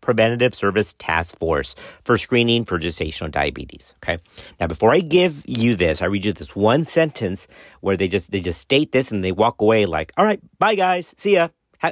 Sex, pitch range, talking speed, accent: male, 100-150 Hz, 205 wpm, American